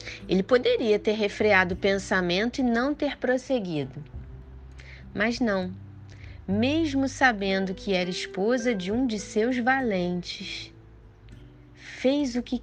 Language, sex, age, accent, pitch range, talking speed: English, female, 20-39, Brazilian, 150-235 Hz, 120 wpm